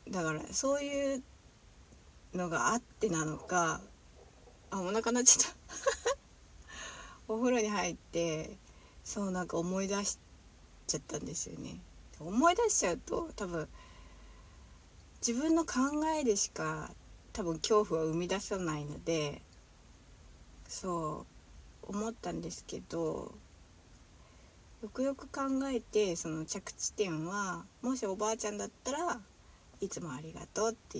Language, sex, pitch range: Japanese, female, 145-225 Hz